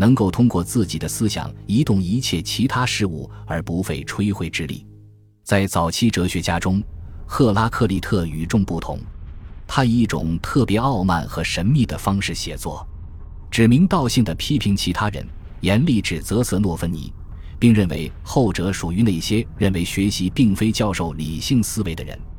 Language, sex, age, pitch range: Chinese, male, 20-39, 85-110 Hz